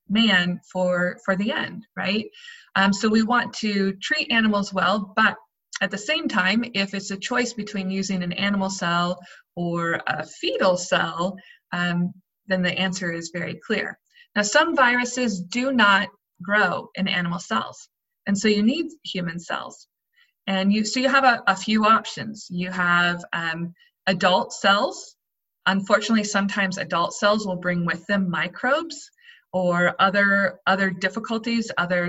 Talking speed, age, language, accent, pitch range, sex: 155 wpm, 20-39, English, American, 180-225 Hz, female